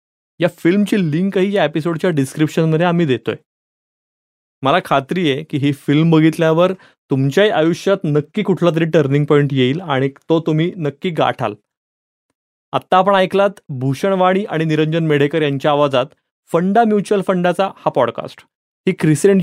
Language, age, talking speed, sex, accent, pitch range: Marathi, 30-49, 135 wpm, male, native, 140-185 Hz